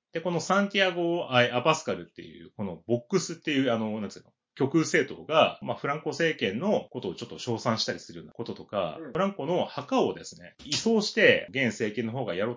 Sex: male